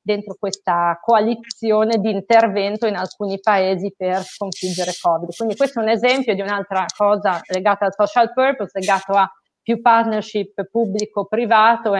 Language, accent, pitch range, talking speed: Italian, native, 185-225 Hz, 145 wpm